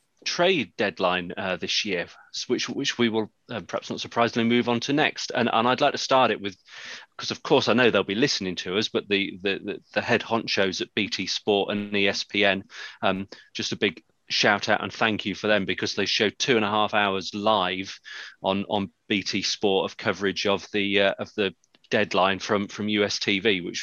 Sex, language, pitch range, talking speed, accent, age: male, English, 95-110 Hz, 210 wpm, British, 30-49